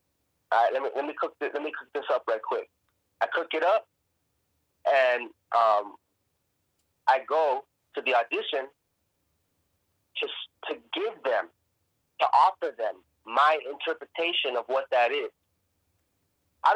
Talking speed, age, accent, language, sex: 145 wpm, 30-49, American, English, male